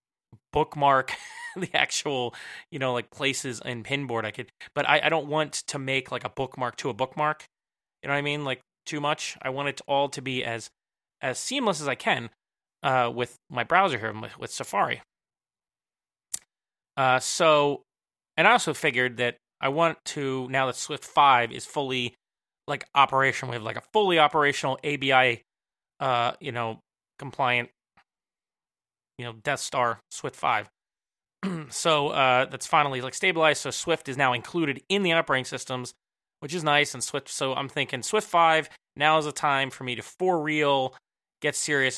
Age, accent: 30-49, American